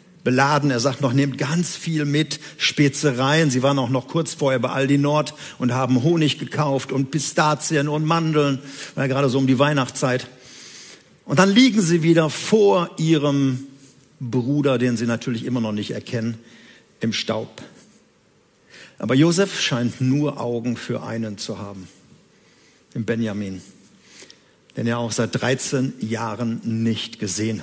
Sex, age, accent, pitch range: male, 50-69, German, 125-155 Hz